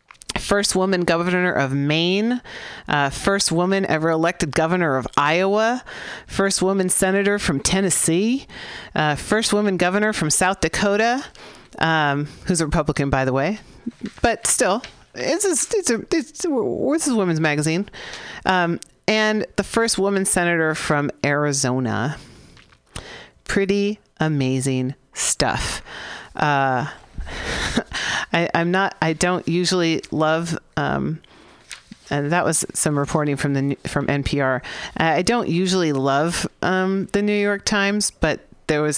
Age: 40-59